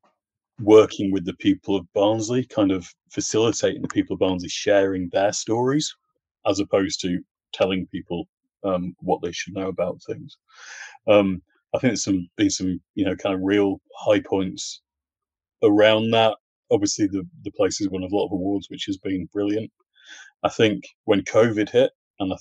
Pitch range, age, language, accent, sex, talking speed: 95-110 Hz, 30-49, English, British, male, 175 wpm